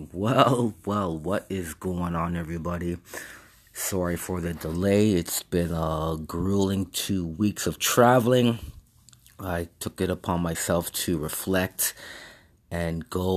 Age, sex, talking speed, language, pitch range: 30-49, male, 125 wpm, English, 80-95 Hz